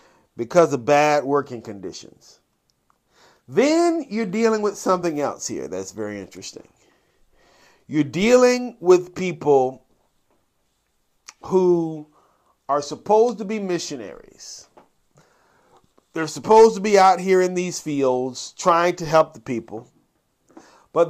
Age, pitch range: 40-59, 140-190 Hz